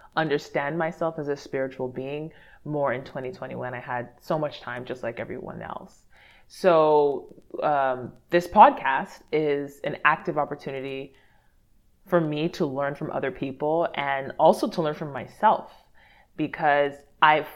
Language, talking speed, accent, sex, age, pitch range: English, 145 wpm, American, female, 20-39, 130-155 Hz